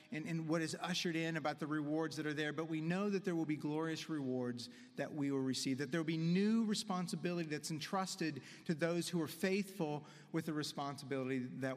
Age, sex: 40-59, male